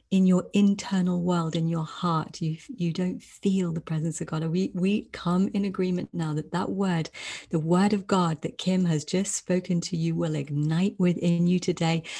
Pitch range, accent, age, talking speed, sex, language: 160-190 Hz, British, 40-59, 200 wpm, female, English